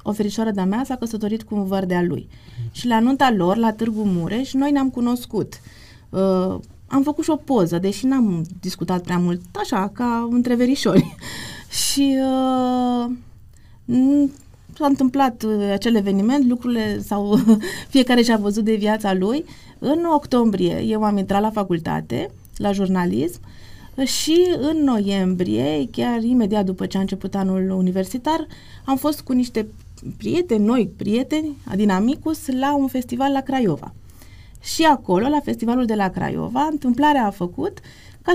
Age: 30-49